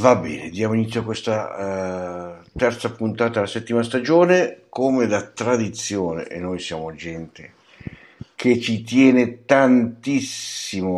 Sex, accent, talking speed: male, native, 120 wpm